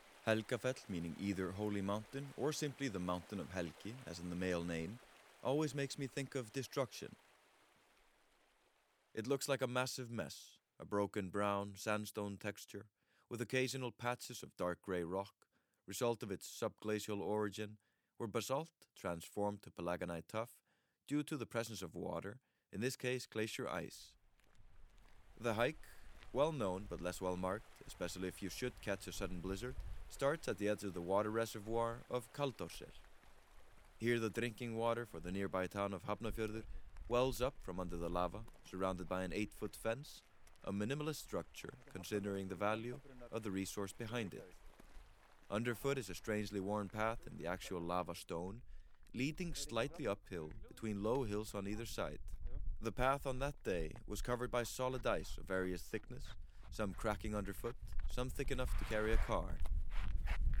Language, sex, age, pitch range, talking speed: English, male, 30-49, 95-120 Hz, 160 wpm